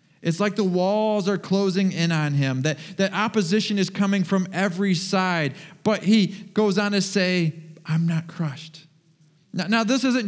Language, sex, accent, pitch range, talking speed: English, male, American, 180-220 Hz, 175 wpm